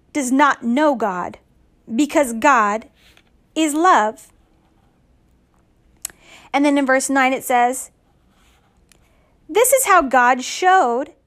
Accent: American